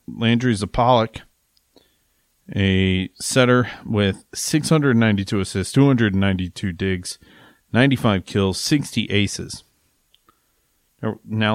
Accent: American